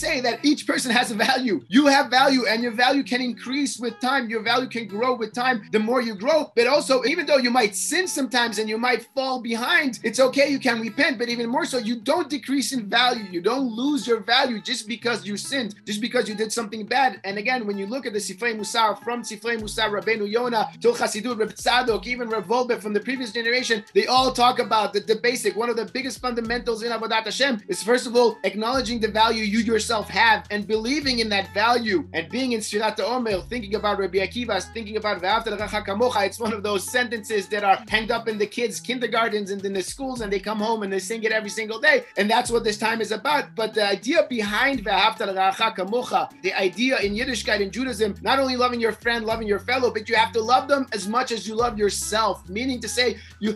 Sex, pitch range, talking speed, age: male, 215-255 Hz, 230 wpm, 30-49